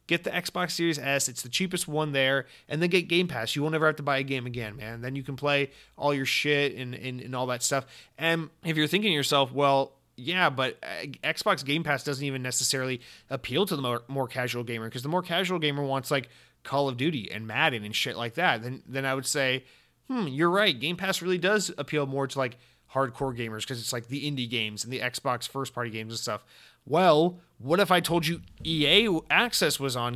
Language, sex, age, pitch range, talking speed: English, male, 30-49, 125-160 Hz, 235 wpm